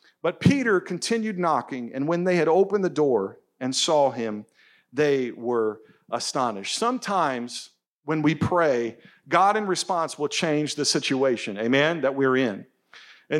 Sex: male